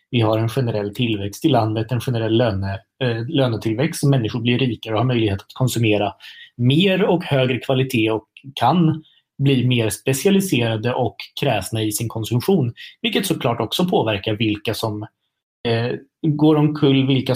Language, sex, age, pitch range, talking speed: Swedish, male, 20-39, 110-135 Hz, 150 wpm